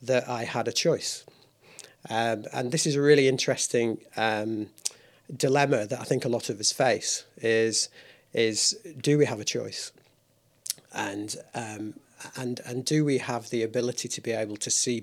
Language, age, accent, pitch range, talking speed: English, 40-59, British, 115-135 Hz, 170 wpm